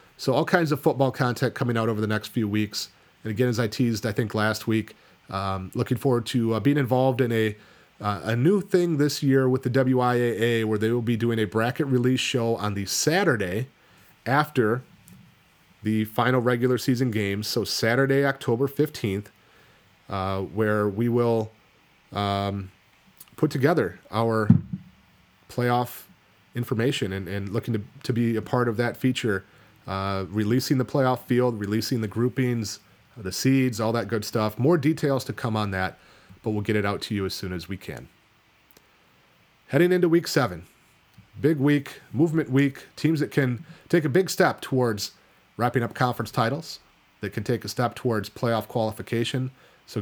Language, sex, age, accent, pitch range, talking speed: English, male, 30-49, American, 110-135 Hz, 175 wpm